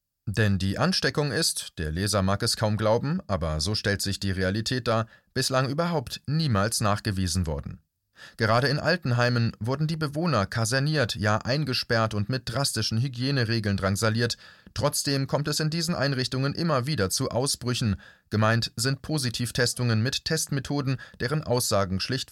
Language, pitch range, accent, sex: German, 105-140 Hz, German, male